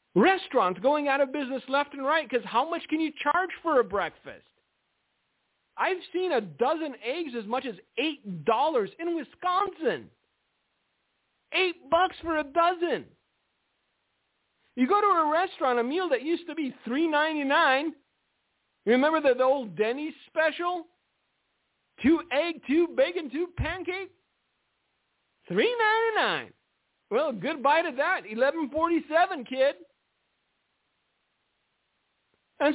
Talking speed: 130 wpm